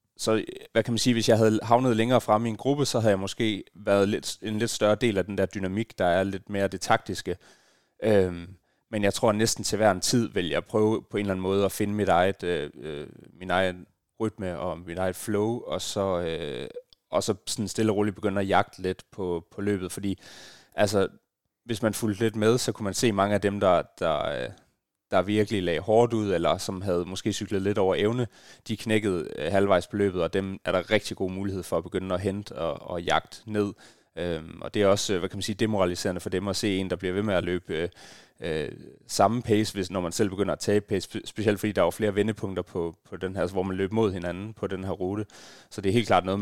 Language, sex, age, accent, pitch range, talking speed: Danish, male, 30-49, native, 95-110 Hz, 240 wpm